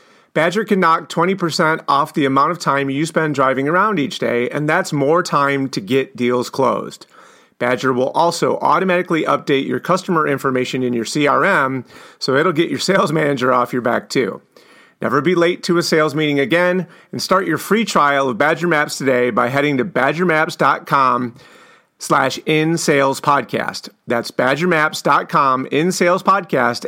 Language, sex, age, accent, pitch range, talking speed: English, male, 40-59, American, 130-155 Hz, 155 wpm